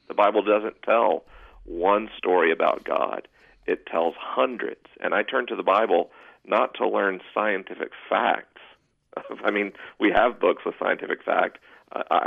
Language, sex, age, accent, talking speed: English, male, 40-59, American, 150 wpm